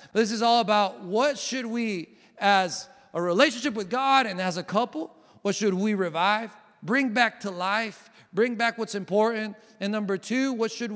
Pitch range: 185-235 Hz